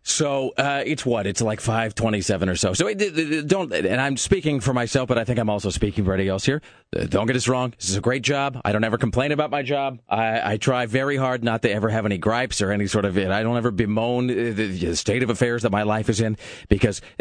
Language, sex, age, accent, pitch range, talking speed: English, male, 30-49, American, 105-135 Hz, 250 wpm